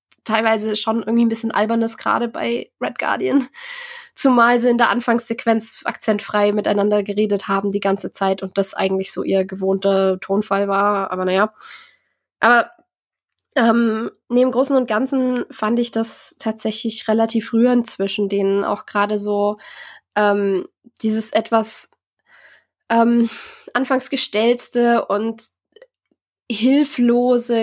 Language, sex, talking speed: German, female, 125 wpm